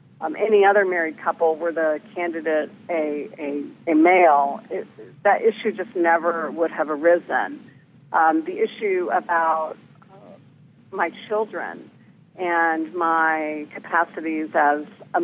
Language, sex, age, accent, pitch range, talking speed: English, female, 50-69, American, 155-195 Hz, 120 wpm